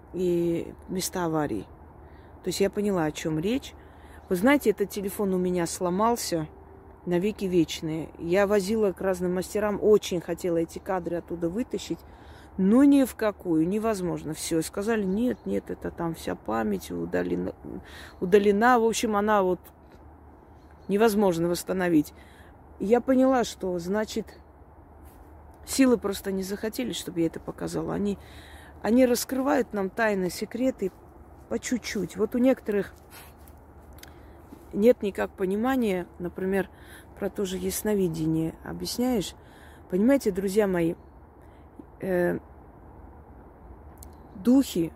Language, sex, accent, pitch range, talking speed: Russian, female, native, 145-215 Hz, 115 wpm